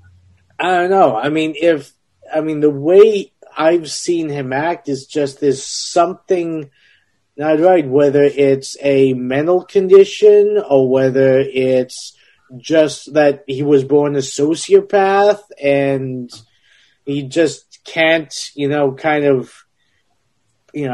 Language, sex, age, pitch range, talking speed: English, male, 20-39, 135-170 Hz, 125 wpm